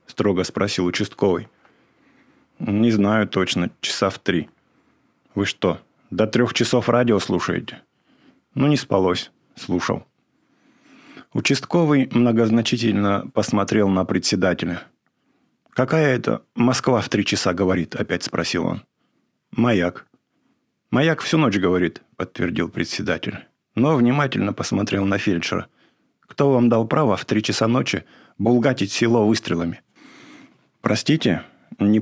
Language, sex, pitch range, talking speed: English, male, 95-120 Hz, 110 wpm